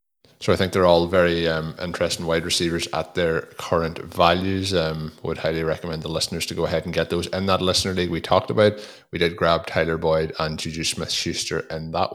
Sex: male